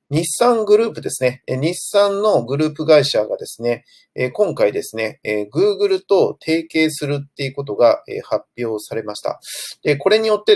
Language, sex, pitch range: Japanese, male, 125-195 Hz